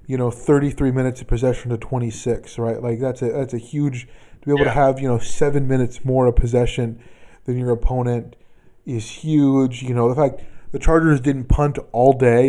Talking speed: 200 wpm